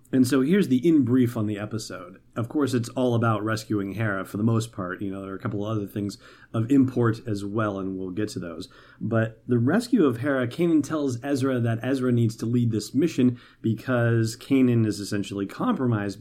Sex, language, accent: male, English, American